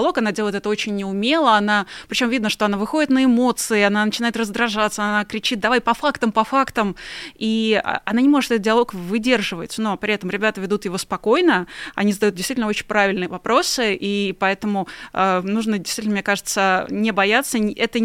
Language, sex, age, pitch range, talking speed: Russian, female, 20-39, 200-230 Hz, 175 wpm